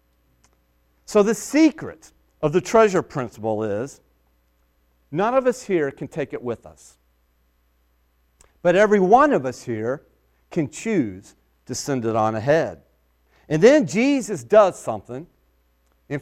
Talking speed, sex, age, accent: 135 wpm, male, 40-59, American